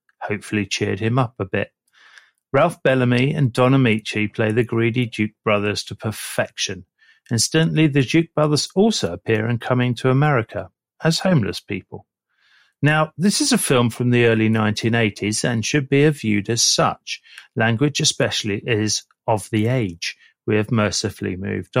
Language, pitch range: English, 110-140 Hz